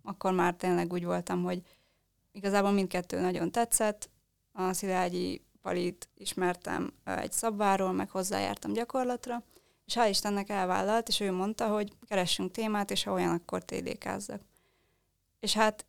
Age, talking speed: 20-39, 135 wpm